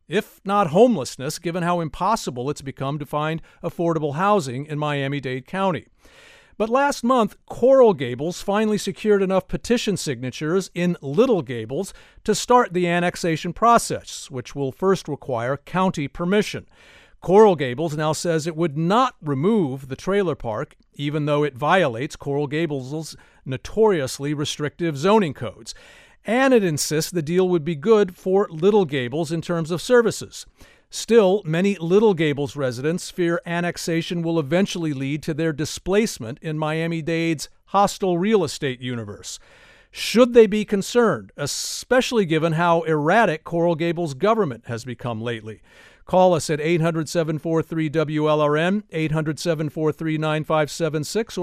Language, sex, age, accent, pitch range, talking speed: English, male, 50-69, American, 150-195 Hz, 130 wpm